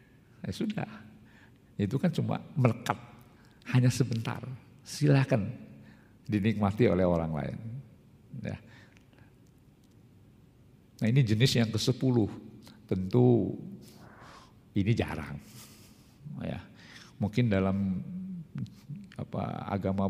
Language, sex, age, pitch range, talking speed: Indonesian, male, 50-69, 95-120 Hz, 70 wpm